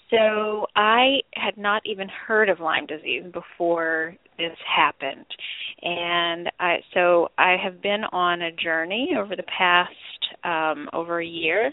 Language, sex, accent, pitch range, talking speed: English, female, American, 175-210 Hz, 145 wpm